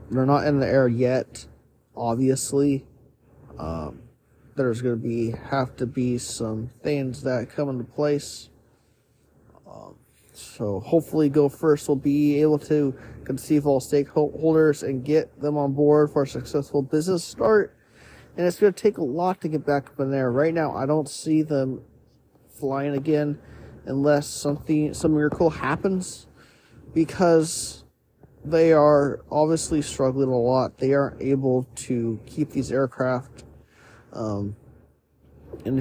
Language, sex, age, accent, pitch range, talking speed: English, male, 30-49, American, 125-150 Hz, 140 wpm